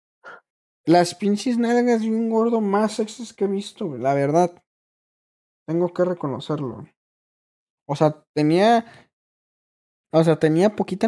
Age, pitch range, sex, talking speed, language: 20-39, 150-205 Hz, male, 130 wpm, Spanish